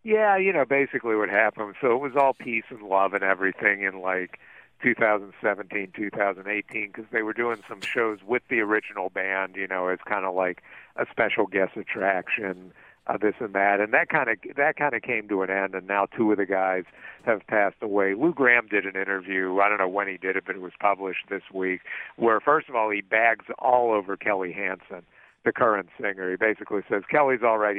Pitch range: 95-115 Hz